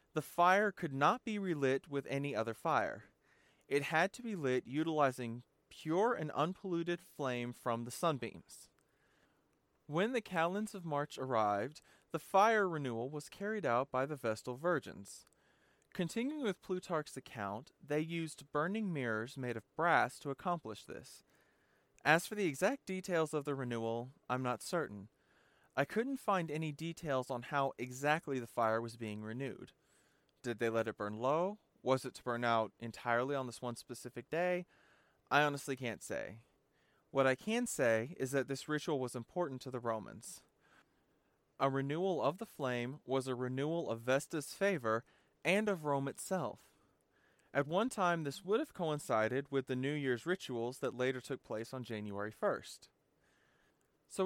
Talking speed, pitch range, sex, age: 160 wpm, 120-175 Hz, male, 30-49